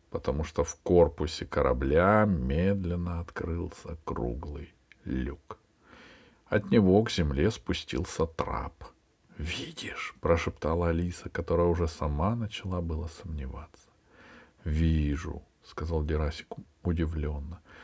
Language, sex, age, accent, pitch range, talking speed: Russian, male, 50-69, native, 80-95 Hz, 95 wpm